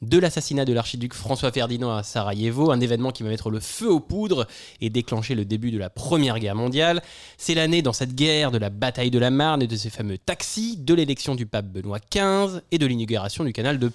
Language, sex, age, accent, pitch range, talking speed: French, male, 20-39, French, 115-160 Hz, 230 wpm